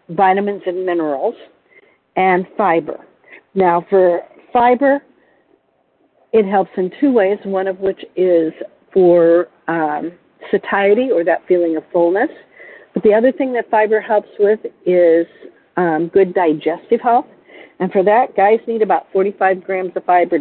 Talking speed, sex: 140 wpm, female